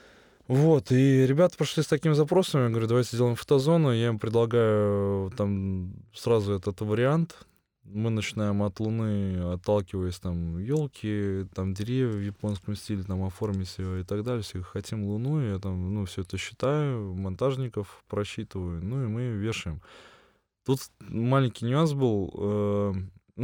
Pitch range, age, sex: 95-120 Hz, 20-39, male